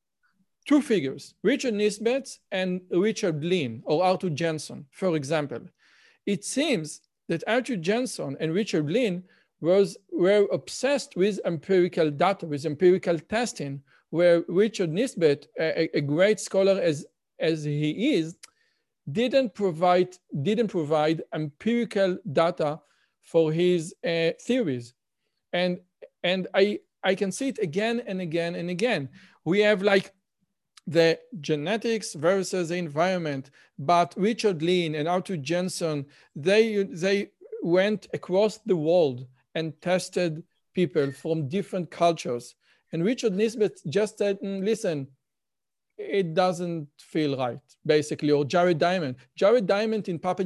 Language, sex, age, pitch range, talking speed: English, male, 50-69, 165-210 Hz, 125 wpm